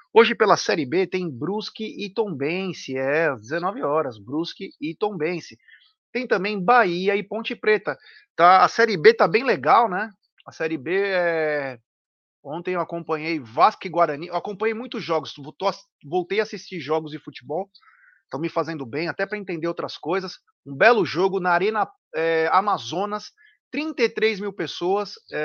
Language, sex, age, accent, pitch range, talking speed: Portuguese, male, 20-39, Brazilian, 170-225 Hz, 155 wpm